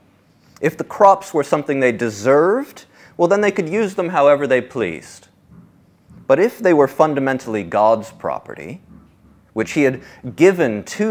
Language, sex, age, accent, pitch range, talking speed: English, male, 30-49, American, 110-155 Hz, 150 wpm